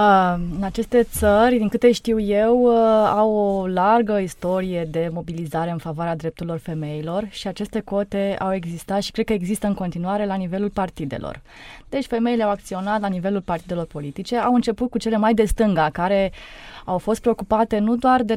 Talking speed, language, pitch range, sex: 175 wpm, Romanian, 175-225 Hz, female